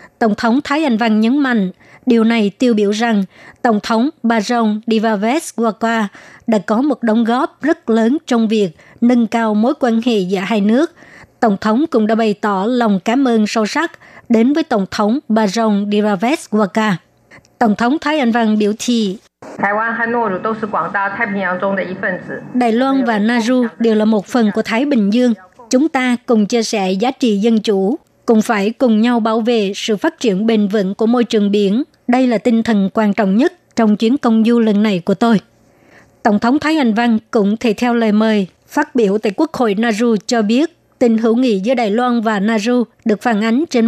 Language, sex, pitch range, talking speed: Vietnamese, male, 215-245 Hz, 190 wpm